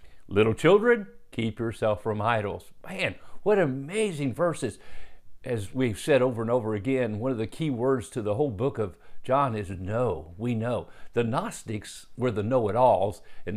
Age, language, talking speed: 50-69, English, 170 wpm